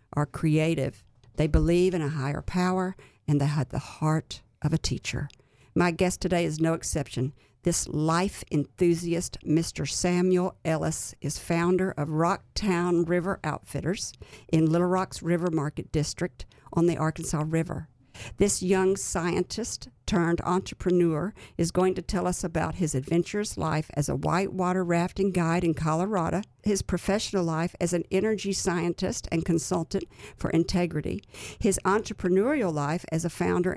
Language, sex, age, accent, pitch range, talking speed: English, female, 50-69, American, 155-185 Hz, 145 wpm